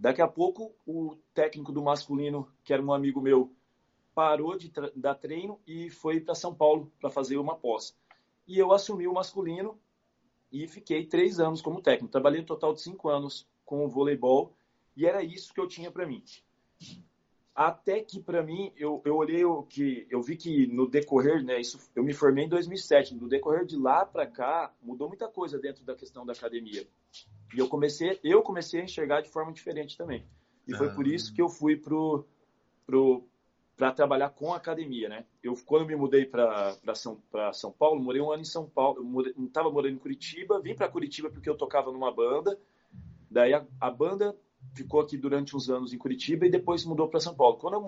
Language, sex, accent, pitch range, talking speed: Portuguese, male, Brazilian, 135-170 Hz, 205 wpm